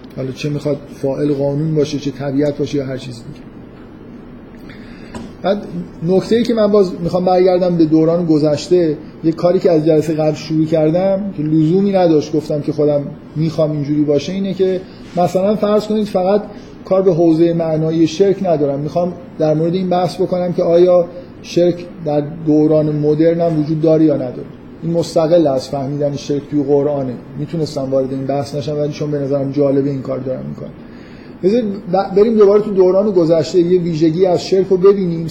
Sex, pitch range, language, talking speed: male, 150-185 Hz, Persian, 175 wpm